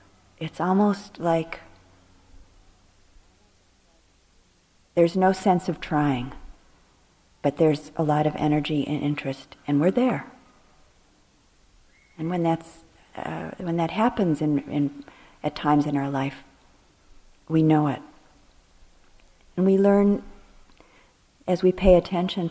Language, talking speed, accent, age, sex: English, 115 wpm, American, 40-59, female